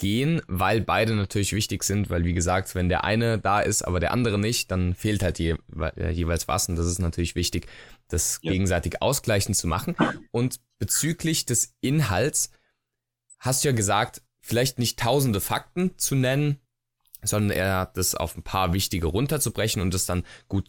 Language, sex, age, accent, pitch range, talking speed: German, male, 20-39, German, 95-125 Hz, 175 wpm